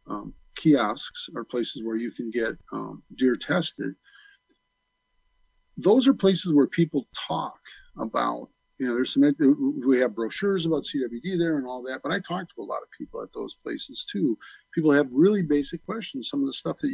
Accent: American